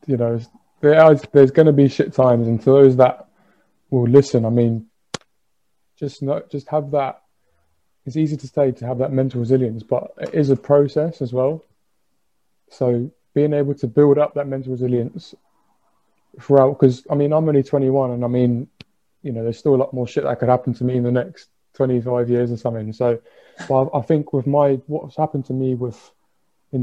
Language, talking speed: English, 200 wpm